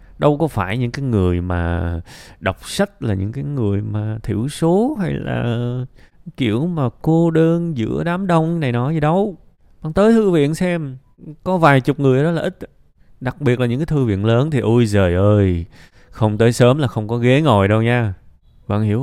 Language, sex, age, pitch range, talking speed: Vietnamese, male, 20-39, 95-135 Hz, 205 wpm